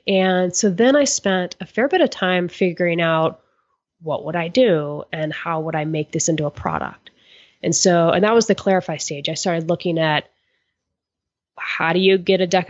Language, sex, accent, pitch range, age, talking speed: English, female, American, 160-200 Hz, 20-39, 205 wpm